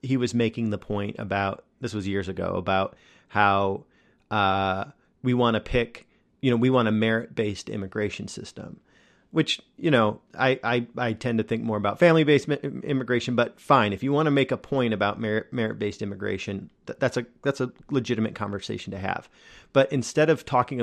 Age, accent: 40-59, American